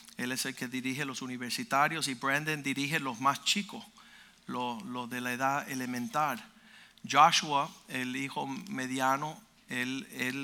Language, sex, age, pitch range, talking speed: Spanish, male, 50-69, 135-185 Hz, 145 wpm